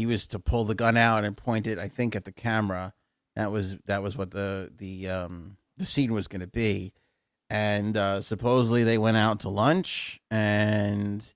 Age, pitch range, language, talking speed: 40-59, 100-120 Hz, English, 200 wpm